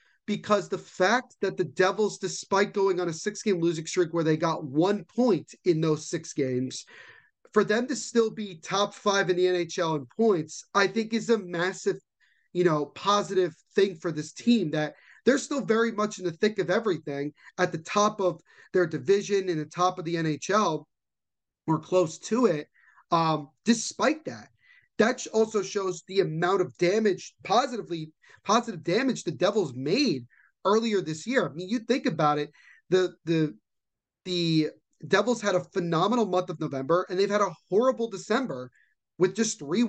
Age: 30-49